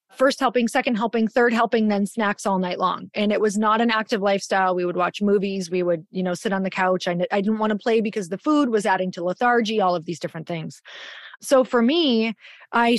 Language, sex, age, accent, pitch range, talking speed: English, female, 30-49, American, 195-235 Hz, 240 wpm